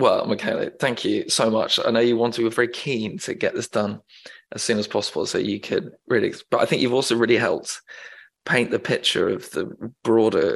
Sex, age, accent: male, 20-39, British